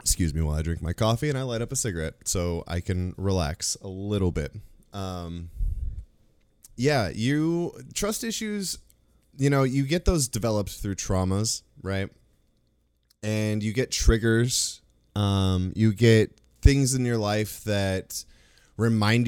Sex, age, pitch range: male, 20-39, 85-115 Hz